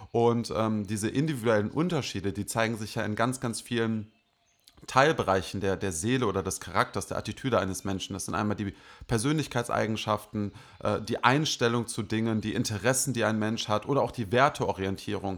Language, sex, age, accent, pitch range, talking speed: German, male, 30-49, German, 105-130 Hz, 170 wpm